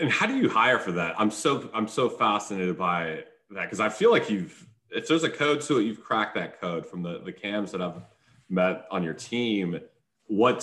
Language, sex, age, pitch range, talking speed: English, male, 30-49, 90-115 Hz, 225 wpm